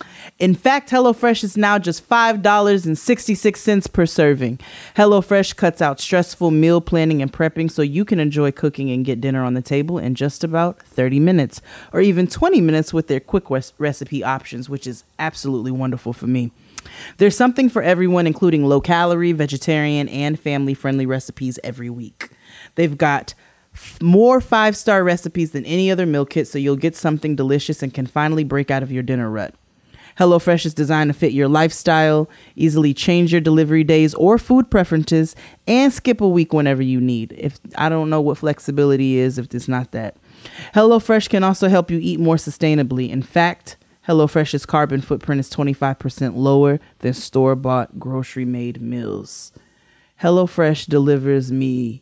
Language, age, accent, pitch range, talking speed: English, 30-49, American, 135-175 Hz, 165 wpm